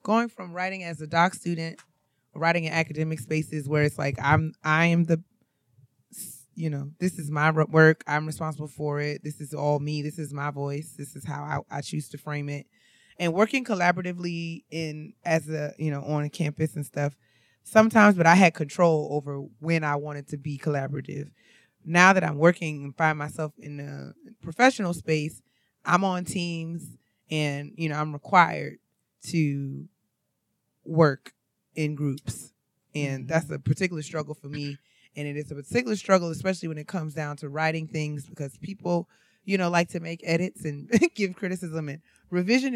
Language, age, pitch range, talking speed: English, 20-39, 145-170 Hz, 175 wpm